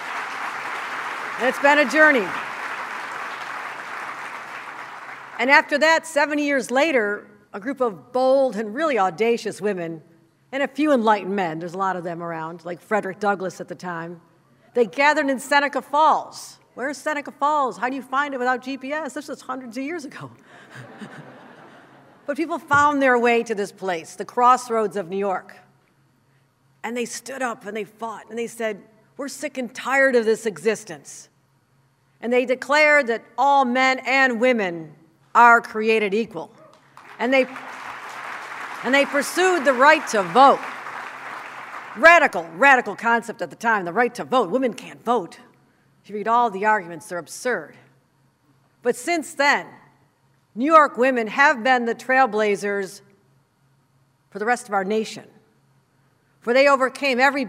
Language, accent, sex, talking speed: English, American, female, 155 wpm